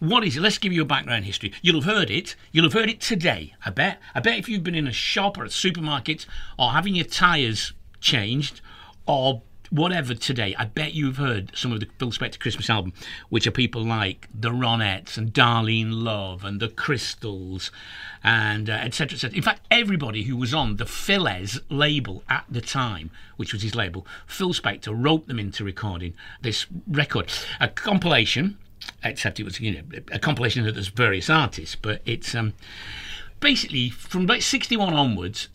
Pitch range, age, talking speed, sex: 105-150 Hz, 50-69, 185 wpm, male